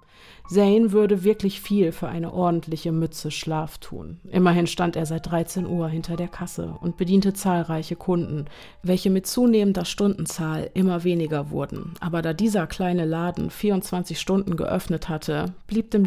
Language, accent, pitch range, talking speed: German, German, 160-195 Hz, 155 wpm